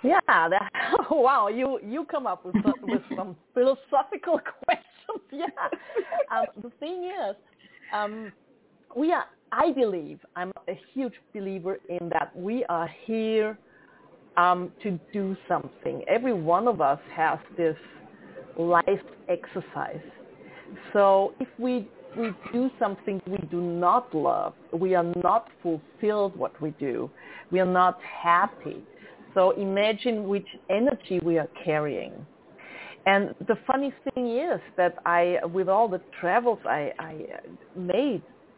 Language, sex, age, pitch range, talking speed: English, female, 40-59, 175-240 Hz, 135 wpm